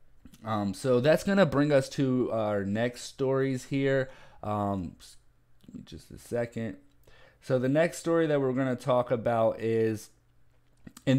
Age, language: 30-49, English